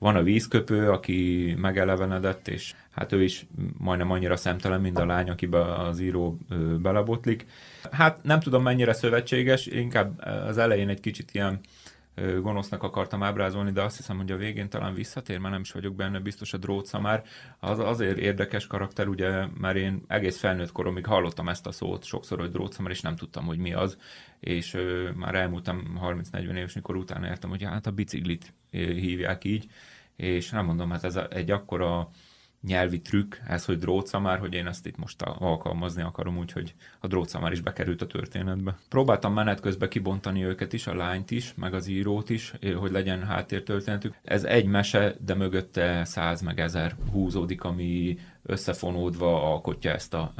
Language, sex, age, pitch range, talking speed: Hungarian, male, 30-49, 90-100 Hz, 175 wpm